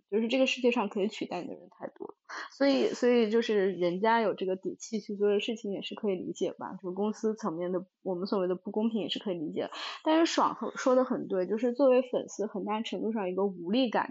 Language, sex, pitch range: Chinese, female, 185-235 Hz